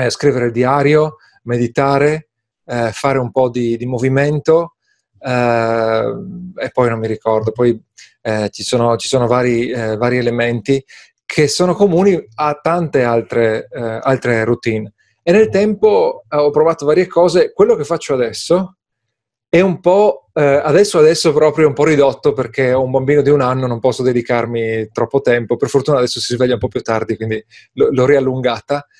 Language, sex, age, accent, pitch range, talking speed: Italian, male, 30-49, native, 120-155 Hz, 170 wpm